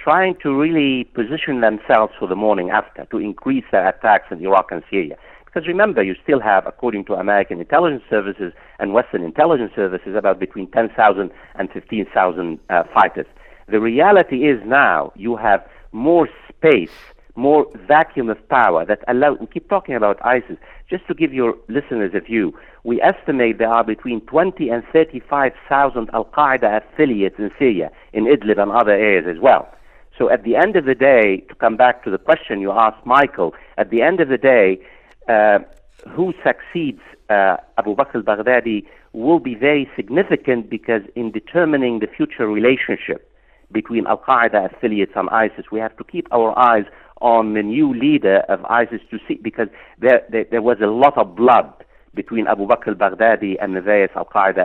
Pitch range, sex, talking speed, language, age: 105-145 Hz, male, 170 wpm, English, 50-69